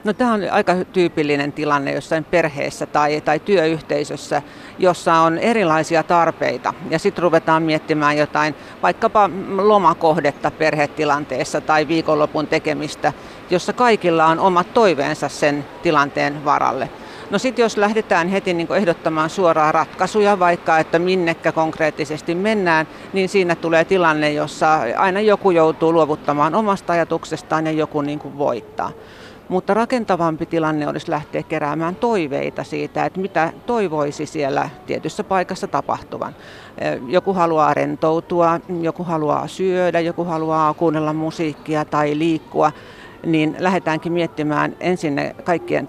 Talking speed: 125 wpm